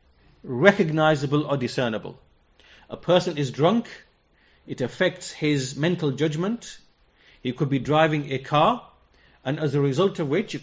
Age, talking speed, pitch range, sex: 30-49, 140 wpm, 135-180 Hz, male